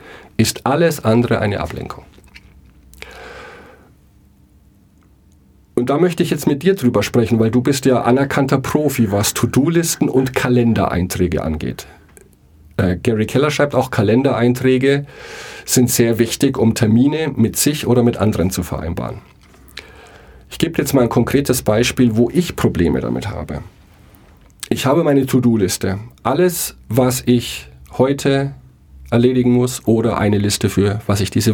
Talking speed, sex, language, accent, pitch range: 135 wpm, male, German, German, 95-130 Hz